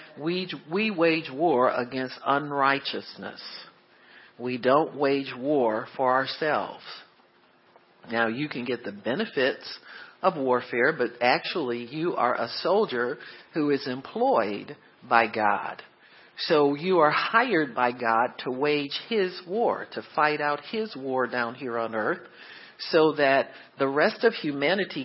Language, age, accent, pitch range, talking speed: English, 50-69, American, 125-160 Hz, 135 wpm